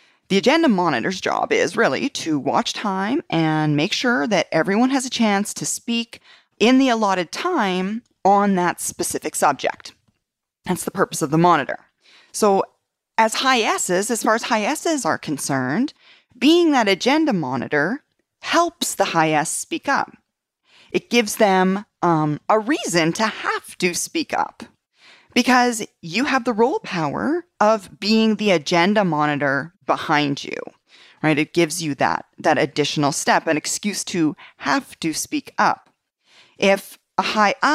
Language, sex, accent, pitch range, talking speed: English, female, American, 160-245 Hz, 155 wpm